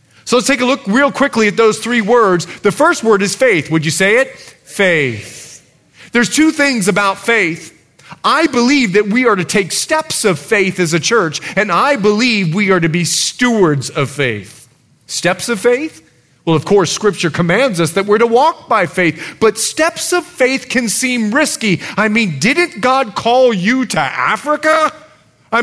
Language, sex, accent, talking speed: English, male, American, 185 wpm